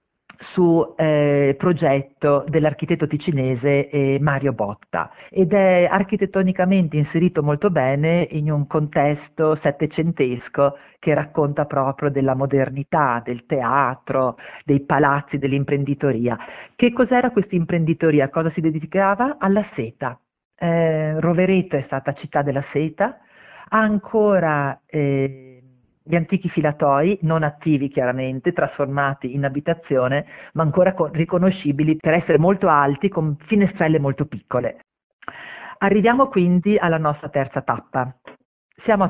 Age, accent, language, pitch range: 50-69, native, Italian, 135-180 Hz